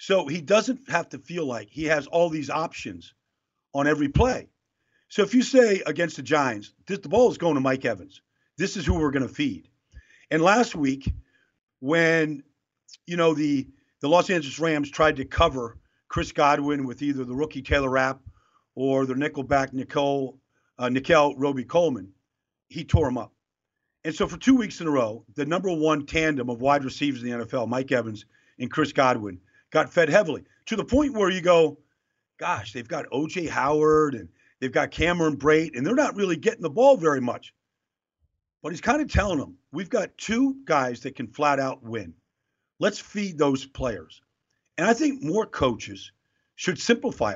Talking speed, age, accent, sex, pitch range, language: 185 wpm, 50-69, American, male, 135-180 Hz, English